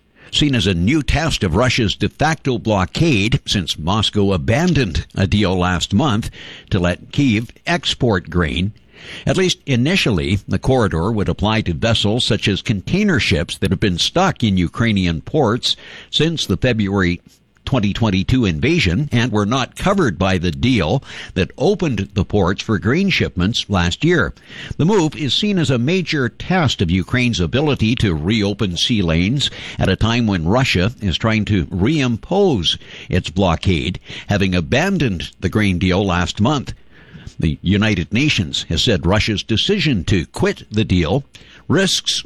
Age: 60-79